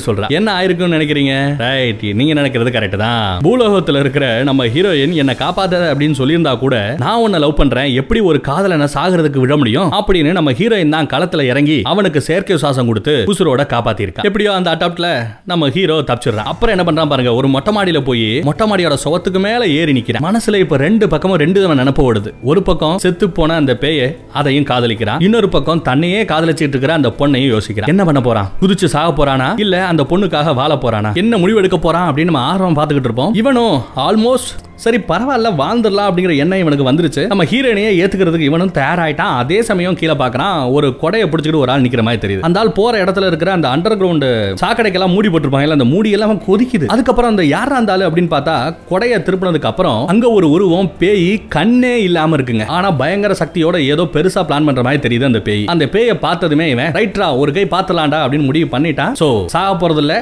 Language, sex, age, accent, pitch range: Tamil, male, 30-49, native, 140-190 Hz